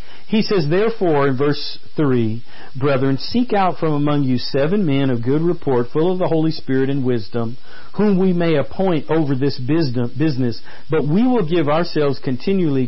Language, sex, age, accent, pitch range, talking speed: English, male, 50-69, American, 135-185 Hz, 170 wpm